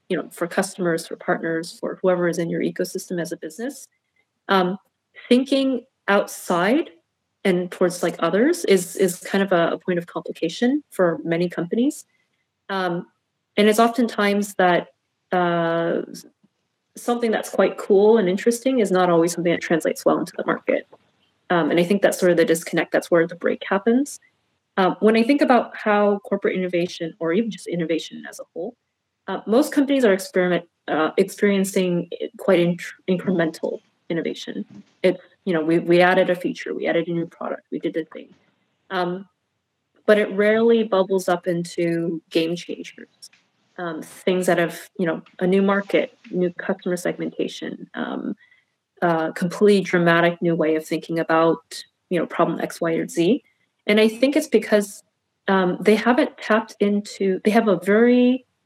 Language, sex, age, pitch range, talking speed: English, female, 30-49, 170-215 Hz, 170 wpm